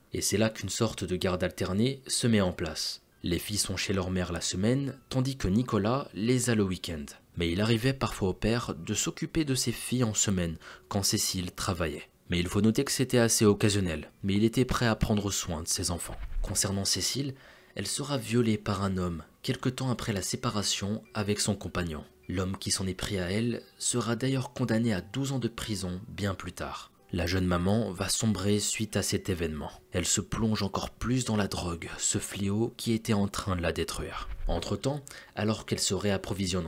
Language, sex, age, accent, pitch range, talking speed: French, male, 20-39, French, 90-115 Hz, 210 wpm